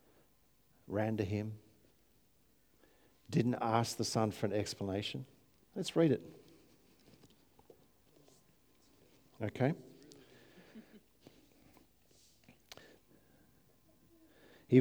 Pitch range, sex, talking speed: 110-140 Hz, male, 60 wpm